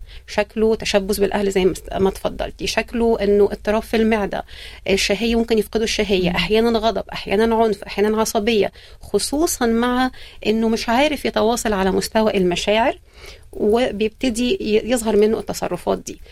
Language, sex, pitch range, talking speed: Arabic, female, 200-235 Hz, 125 wpm